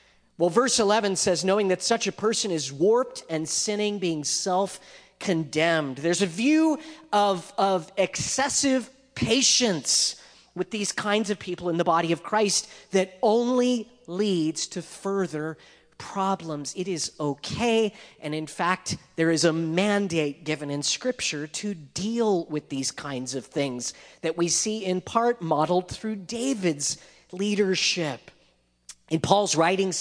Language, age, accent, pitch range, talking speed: English, 40-59, American, 160-210 Hz, 140 wpm